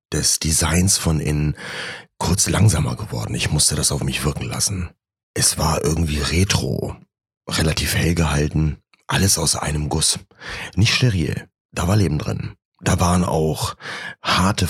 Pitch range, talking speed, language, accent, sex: 80-100 Hz, 145 wpm, German, German, male